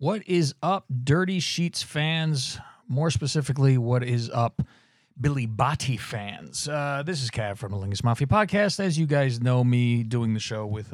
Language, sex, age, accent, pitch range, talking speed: English, male, 40-59, American, 110-150 Hz, 175 wpm